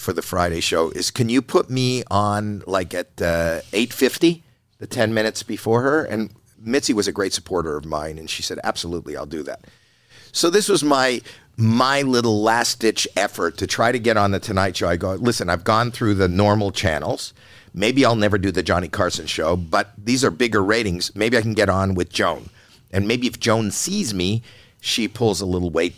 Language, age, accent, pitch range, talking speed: English, 50-69, American, 90-120 Hz, 210 wpm